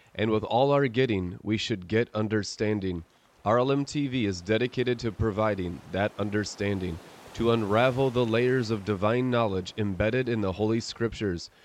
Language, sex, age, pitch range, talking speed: English, male, 30-49, 100-120 Hz, 145 wpm